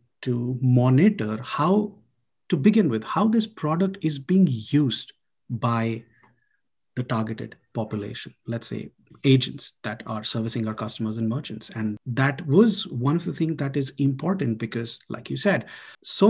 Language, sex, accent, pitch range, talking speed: English, male, Indian, 115-145 Hz, 150 wpm